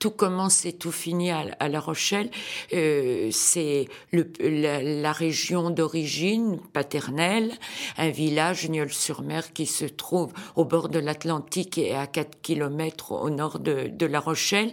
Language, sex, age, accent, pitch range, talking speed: French, female, 50-69, French, 155-185 Hz, 150 wpm